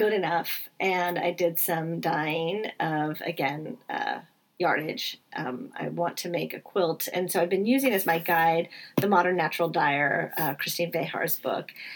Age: 30-49